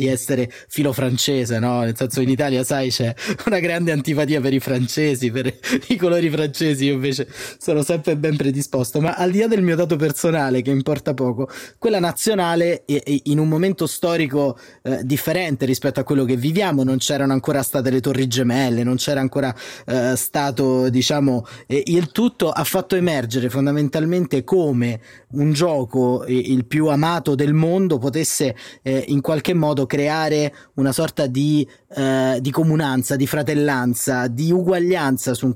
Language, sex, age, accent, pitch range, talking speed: Italian, male, 30-49, native, 130-160 Hz, 160 wpm